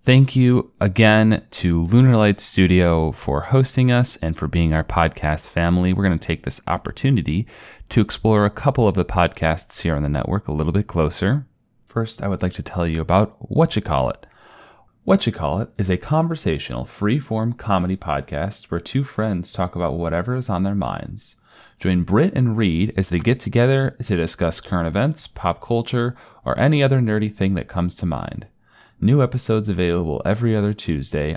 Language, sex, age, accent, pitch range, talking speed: English, male, 30-49, American, 85-110 Hz, 185 wpm